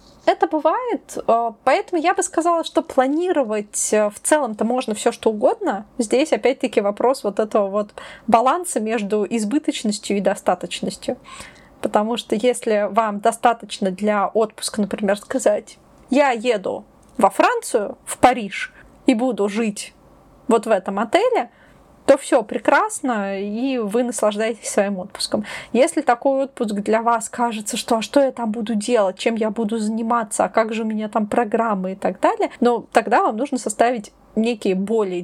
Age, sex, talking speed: 20-39, female, 150 wpm